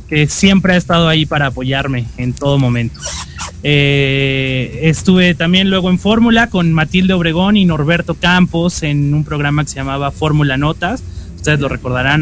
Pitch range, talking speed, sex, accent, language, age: 140-190 Hz, 160 wpm, male, Mexican, Spanish, 20-39